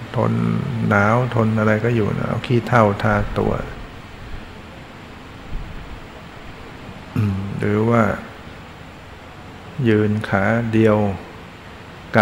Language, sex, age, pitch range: Thai, male, 60-79, 100-115 Hz